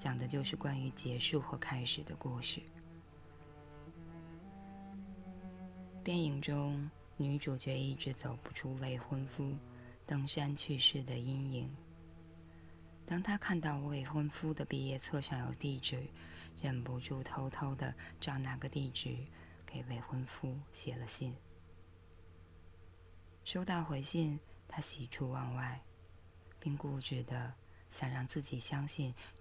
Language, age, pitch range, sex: Chinese, 20-39, 90-145 Hz, female